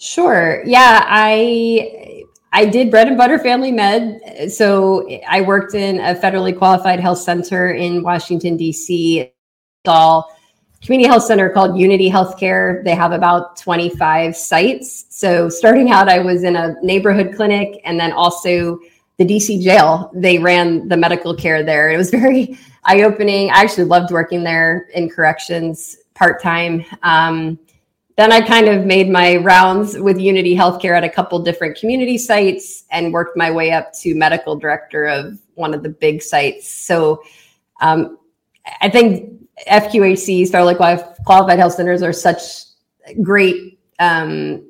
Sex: female